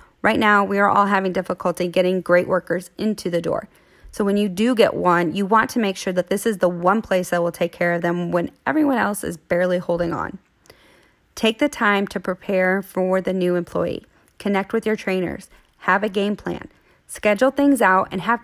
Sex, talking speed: female, 210 wpm